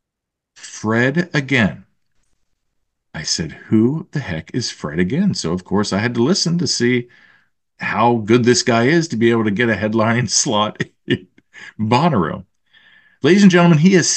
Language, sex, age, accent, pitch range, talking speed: English, male, 40-59, American, 105-155 Hz, 165 wpm